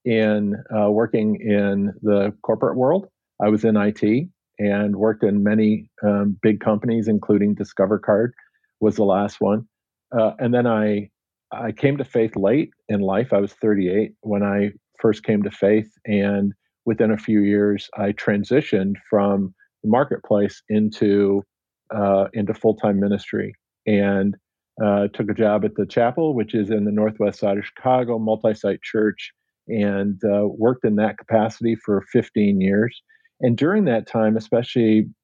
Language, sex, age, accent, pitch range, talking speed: English, male, 50-69, American, 100-110 Hz, 155 wpm